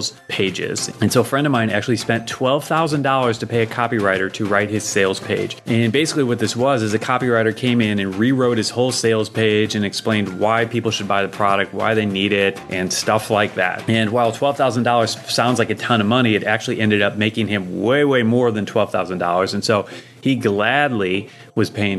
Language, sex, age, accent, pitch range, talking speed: English, male, 30-49, American, 105-125 Hz, 210 wpm